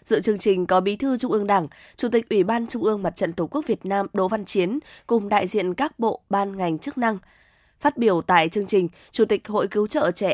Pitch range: 185-220 Hz